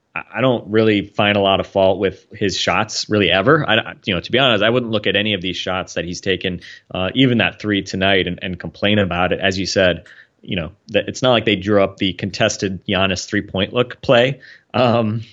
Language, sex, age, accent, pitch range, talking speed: English, male, 30-49, American, 90-105 Hz, 235 wpm